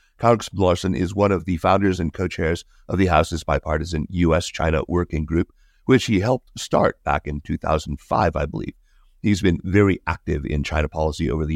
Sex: male